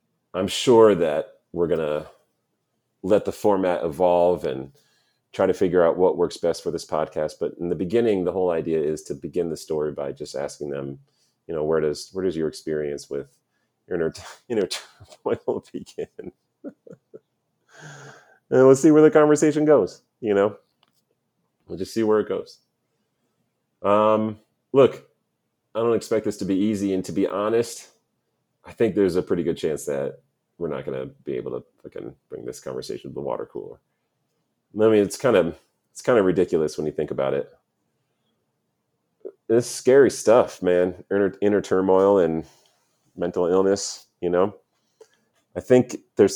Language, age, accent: English, 30-49, American